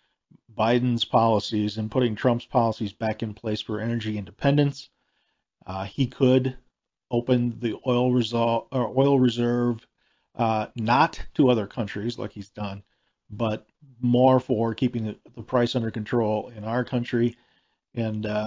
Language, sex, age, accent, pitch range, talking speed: English, male, 40-59, American, 115-130 Hz, 140 wpm